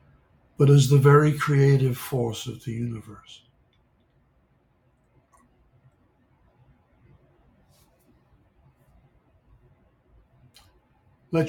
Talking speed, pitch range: 50 wpm, 120-140 Hz